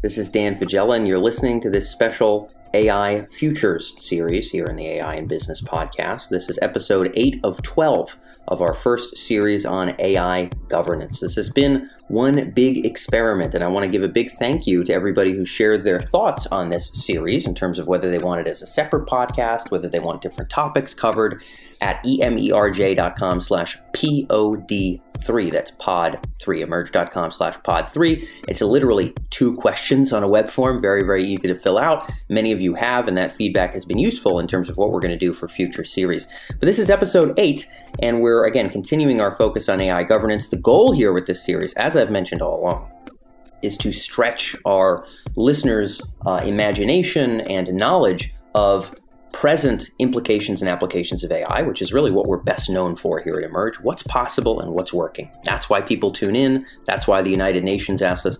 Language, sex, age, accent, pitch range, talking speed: English, male, 30-49, American, 95-125 Hz, 195 wpm